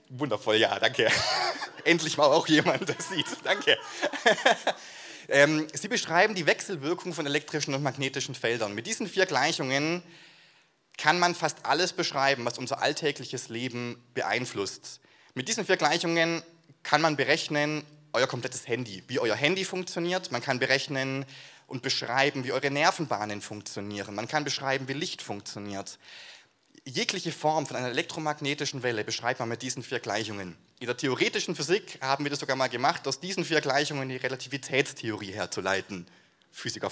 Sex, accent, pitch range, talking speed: male, German, 120-160 Hz, 150 wpm